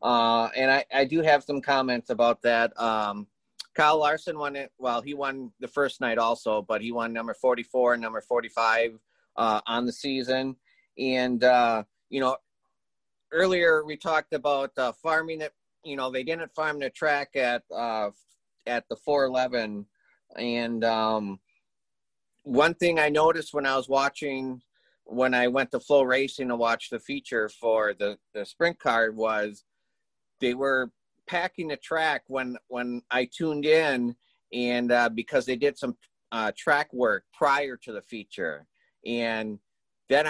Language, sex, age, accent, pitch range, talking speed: English, male, 30-49, American, 120-145 Hz, 160 wpm